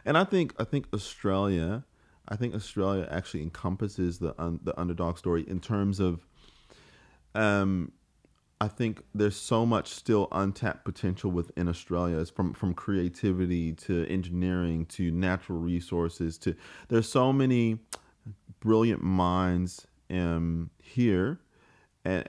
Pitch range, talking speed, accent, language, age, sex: 85-105 Hz, 125 wpm, American, English, 30-49, male